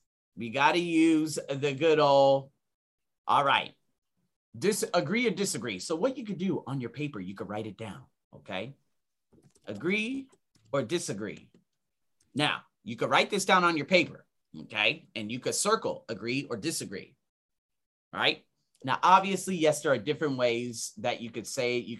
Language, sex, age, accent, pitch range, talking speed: English, male, 30-49, American, 120-165 Hz, 160 wpm